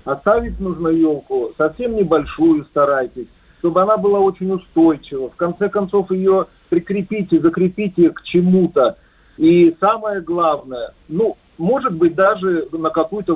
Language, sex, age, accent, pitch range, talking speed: Russian, male, 50-69, native, 155-195 Hz, 125 wpm